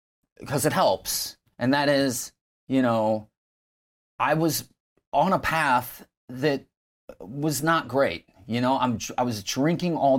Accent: American